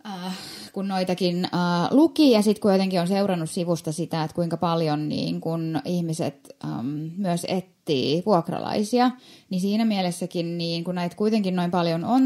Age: 20-39